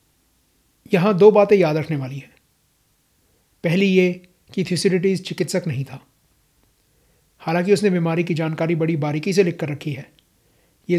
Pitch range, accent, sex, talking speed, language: 150-180 Hz, native, male, 145 wpm, Hindi